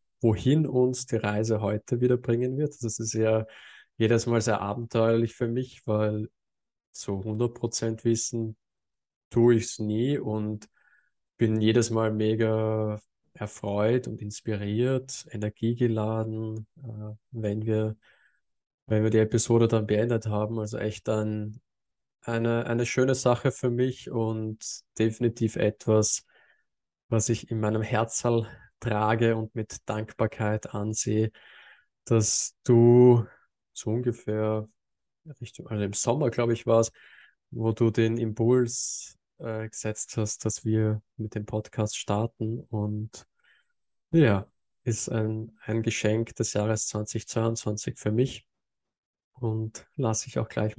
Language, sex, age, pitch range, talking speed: German, male, 20-39, 110-115 Hz, 125 wpm